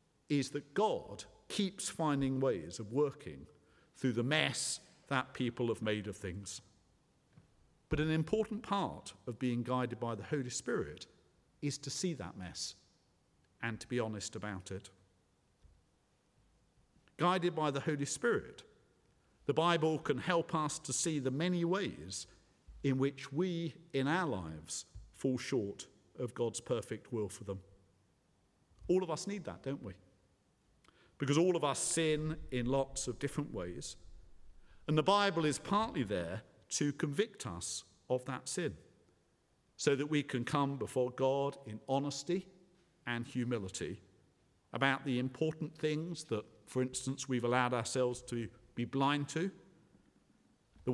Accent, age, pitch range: British, 50-69, 110-155 Hz